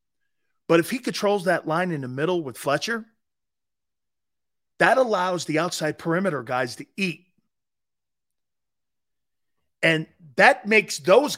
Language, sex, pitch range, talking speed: English, male, 150-240 Hz, 120 wpm